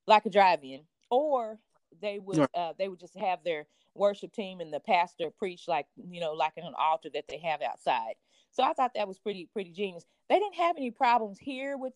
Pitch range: 175-225 Hz